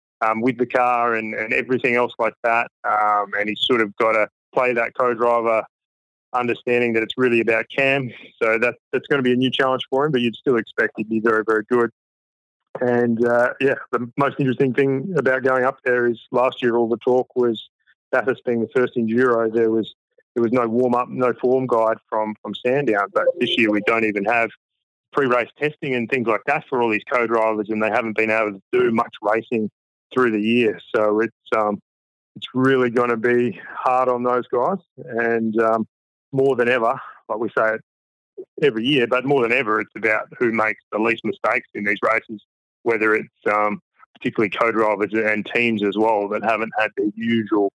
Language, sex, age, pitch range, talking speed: English, male, 20-39, 110-125 Hz, 200 wpm